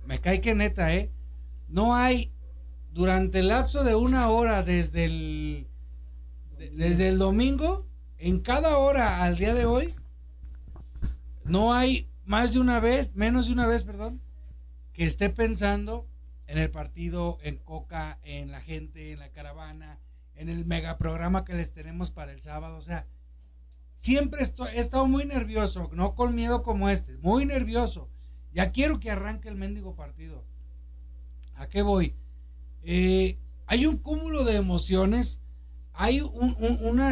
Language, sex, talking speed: Spanish, male, 155 wpm